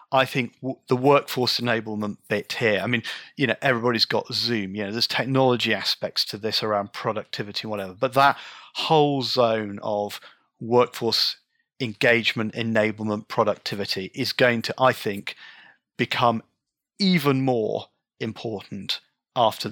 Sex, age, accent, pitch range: male, 40-59, British, 110-135 Hz